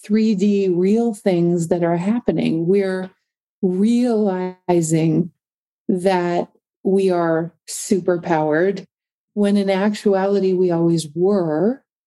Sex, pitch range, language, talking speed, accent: female, 180-210 Hz, English, 95 wpm, American